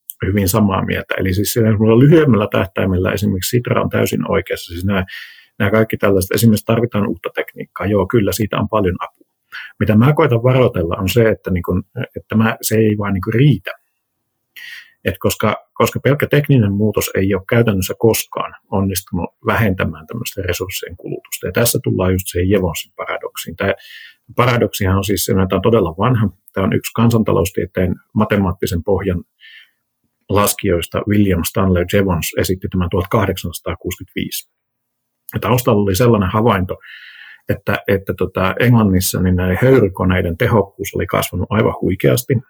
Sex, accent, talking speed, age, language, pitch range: male, native, 145 wpm, 50-69, Finnish, 95-115 Hz